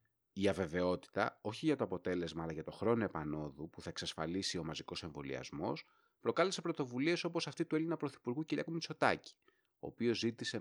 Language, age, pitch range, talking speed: Greek, 30-49, 95-140 Hz, 165 wpm